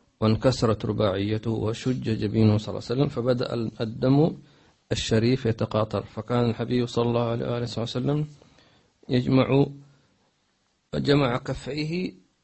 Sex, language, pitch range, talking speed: male, English, 110-130 Hz, 100 wpm